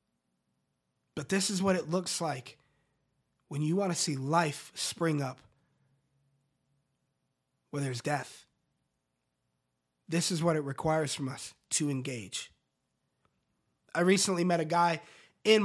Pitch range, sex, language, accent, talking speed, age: 155-185 Hz, male, English, American, 125 wpm, 20-39